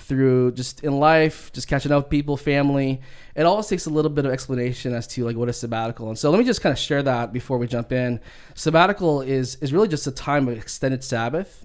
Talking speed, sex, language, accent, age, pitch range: 240 wpm, male, English, American, 20-39, 115-135 Hz